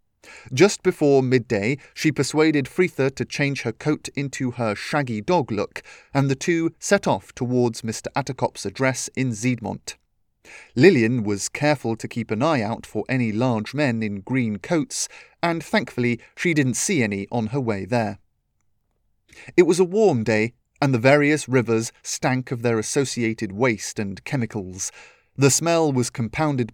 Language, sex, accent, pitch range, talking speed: English, male, British, 110-150 Hz, 160 wpm